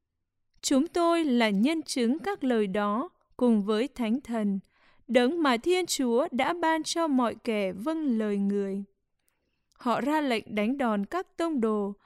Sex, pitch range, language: female, 215-305 Hz, English